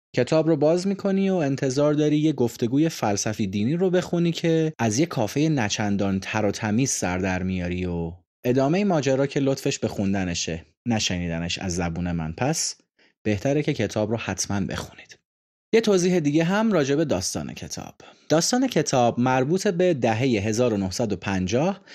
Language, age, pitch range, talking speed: Persian, 30-49, 105-155 Hz, 155 wpm